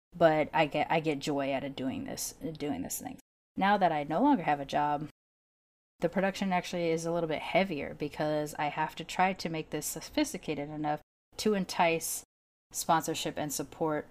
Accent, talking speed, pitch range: American, 185 wpm, 150-175 Hz